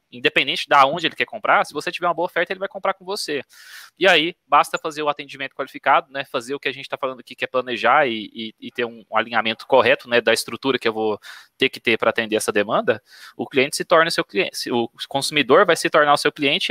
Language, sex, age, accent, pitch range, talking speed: Portuguese, male, 20-39, Brazilian, 125-155 Hz, 250 wpm